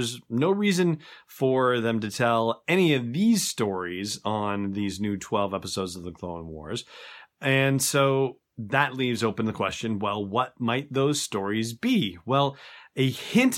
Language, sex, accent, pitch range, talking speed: English, male, American, 110-135 Hz, 160 wpm